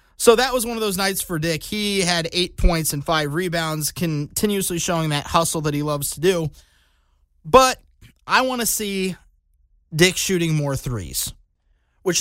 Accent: American